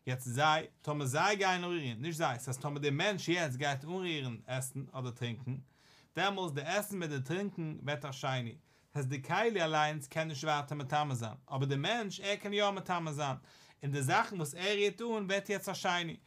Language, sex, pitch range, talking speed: English, male, 140-195 Hz, 160 wpm